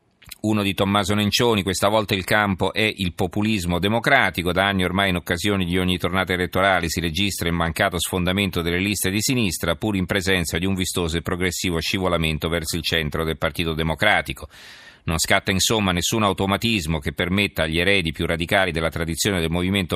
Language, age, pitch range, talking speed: Italian, 40-59, 85-100 Hz, 180 wpm